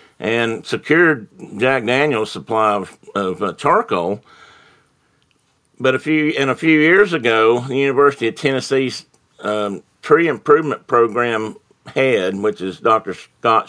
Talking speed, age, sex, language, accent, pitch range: 130 wpm, 50-69, male, English, American, 105-130 Hz